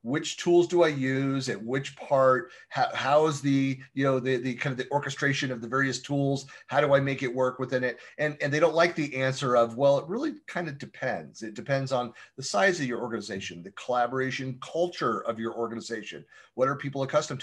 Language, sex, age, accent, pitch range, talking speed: English, male, 30-49, American, 125-165 Hz, 220 wpm